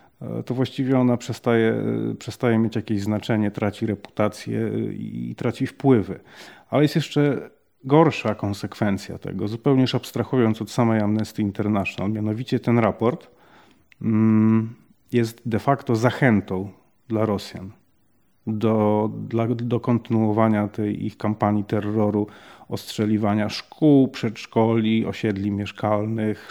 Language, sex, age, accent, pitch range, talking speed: Polish, male, 40-59, native, 105-125 Hz, 105 wpm